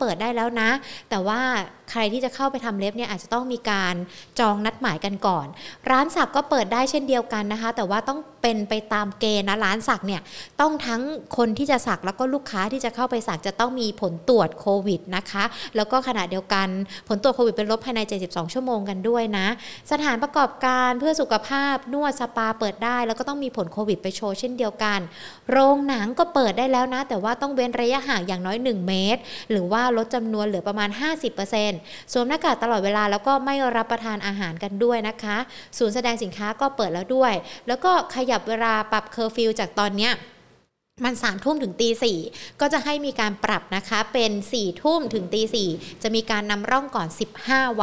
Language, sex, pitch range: Thai, female, 210-255 Hz